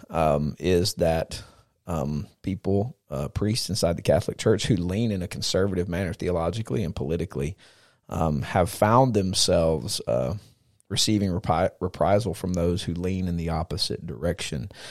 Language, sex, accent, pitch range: English, male, American, 90-110 Hz